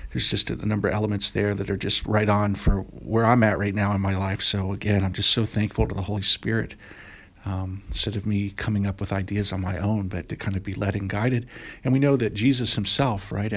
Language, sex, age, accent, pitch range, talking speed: English, male, 50-69, American, 100-120 Hz, 250 wpm